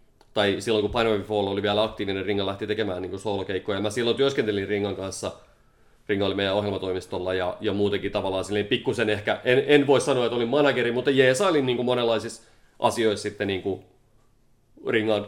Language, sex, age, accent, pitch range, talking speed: Finnish, male, 30-49, native, 105-135 Hz, 170 wpm